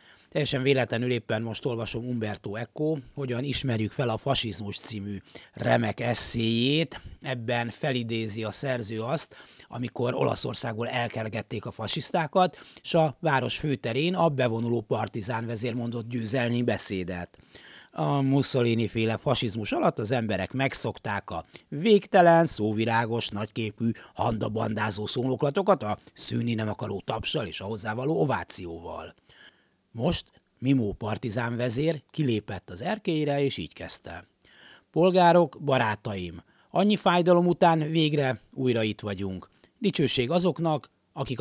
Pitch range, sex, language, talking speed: 110-145 Hz, male, Hungarian, 115 wpm